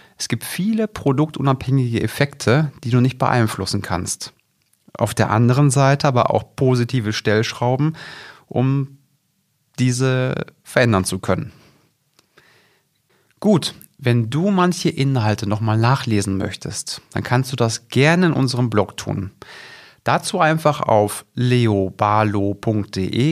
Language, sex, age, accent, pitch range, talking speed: German, male, 40-59, German, 105-145 Hz, 115 wpm